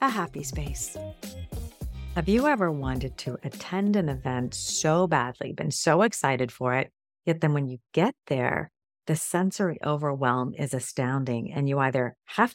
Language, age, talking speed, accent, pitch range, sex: English, 40-59, 160 wpm, American, 135-170 Hz, female